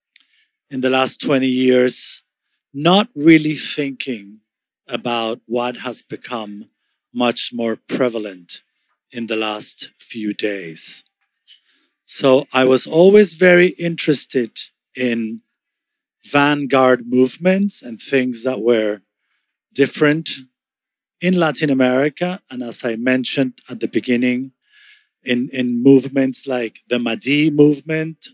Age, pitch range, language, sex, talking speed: 50-69, 120-165 Hz, English, male, 110 wpm